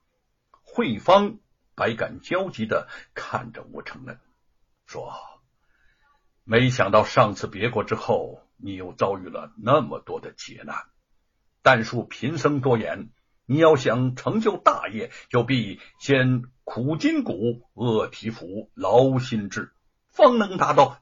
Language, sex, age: Chinese, male, 60-79